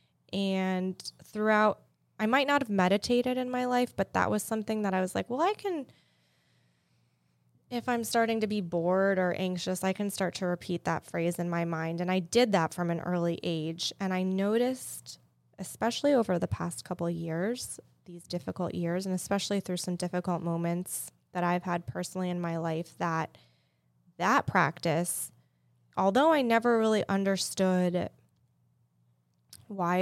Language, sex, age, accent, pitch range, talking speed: English, female, 20-39, American, 170-195 Hz, 165 wpm